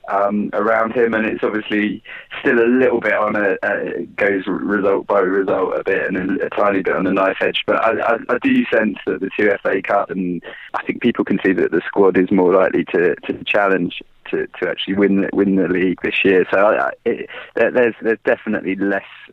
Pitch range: 95-140 Hz